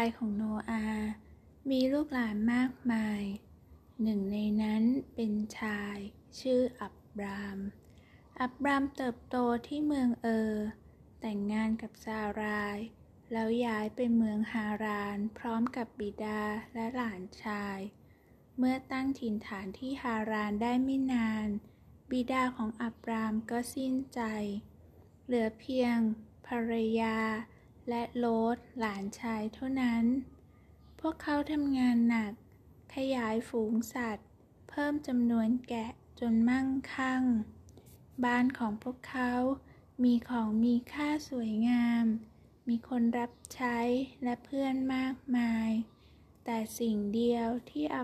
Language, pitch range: Thai, 220-250 Hz